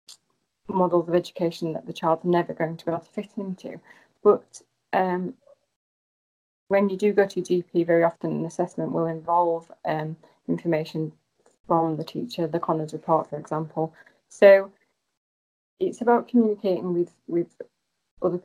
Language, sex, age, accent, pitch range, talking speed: English, female, 30-49, British, 155-175 Hz, 150 wpm